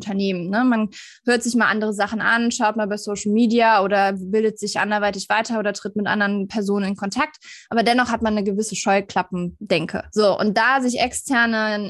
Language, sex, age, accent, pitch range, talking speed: German, female, 20-39, German, 210-245 Hz, 190 wpm